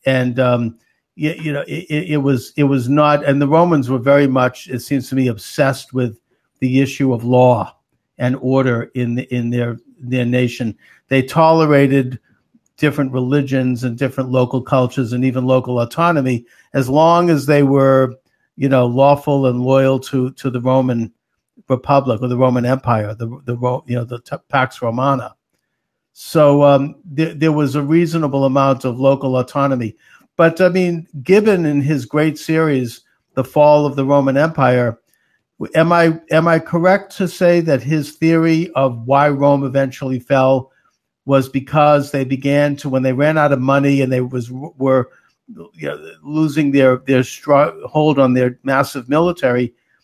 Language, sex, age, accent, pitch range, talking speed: English, male, 60-79, American, 125-150 Hz, 165 wpm